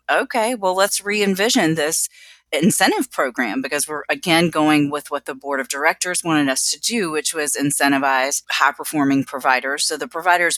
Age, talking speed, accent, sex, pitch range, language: 30-49, 165 wpm, American, female, 135-165 Hz, English